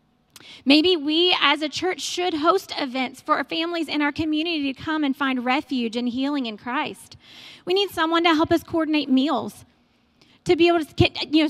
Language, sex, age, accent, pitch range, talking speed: English, female, 30-49, American, 270-325 Hz, 195 wpm